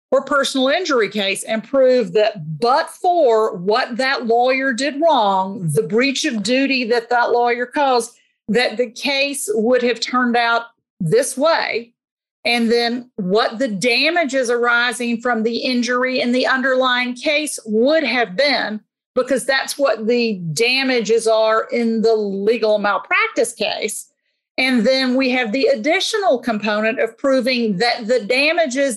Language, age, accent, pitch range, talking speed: English, 40-59, American, 225-275 Hz, 145 wpm